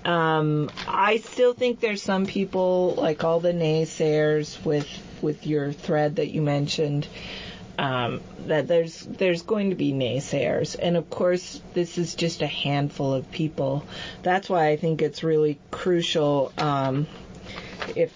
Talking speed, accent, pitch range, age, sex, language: 150 wpm, American, 145-180 Hz, 30-49, female, English